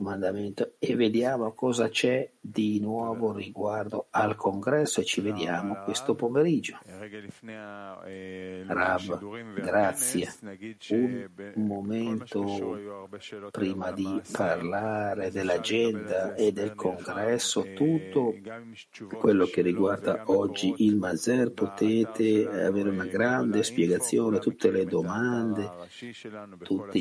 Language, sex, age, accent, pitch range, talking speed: Italian, male, 50-69, native, 95-115 Hz, 90 wpm